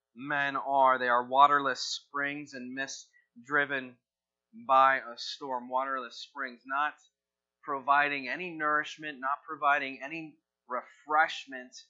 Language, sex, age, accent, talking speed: English, male, 30-49, American, 110 wpm